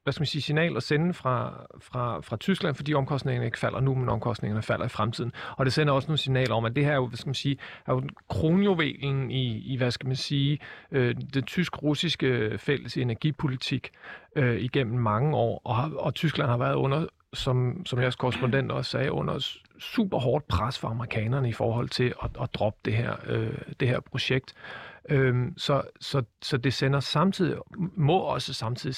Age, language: 40-59, Danish